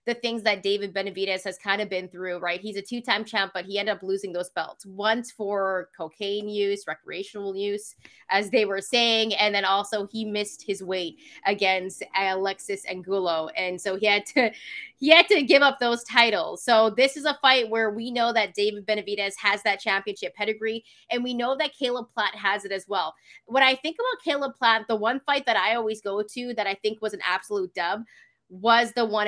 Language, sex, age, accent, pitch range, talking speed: English, female, 20-39, American, 200-245 Hz, 210 wpm